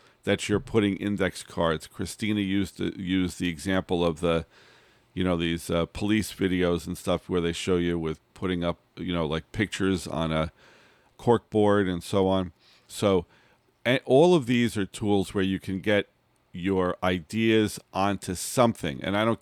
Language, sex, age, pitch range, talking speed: English, male, 50-69, 90-105 Hz, 175 wpm